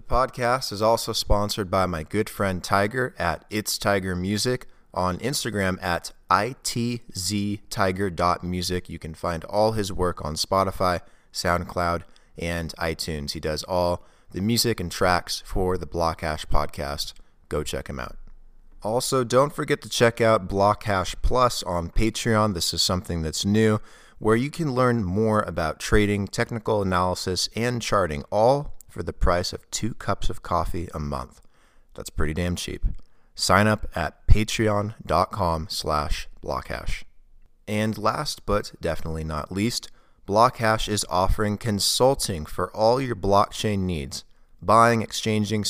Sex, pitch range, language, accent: male, 85-110 Hz, English, American